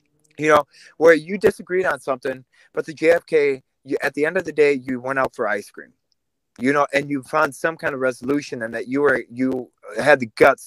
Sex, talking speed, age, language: male, 225 wpm, 20-39, English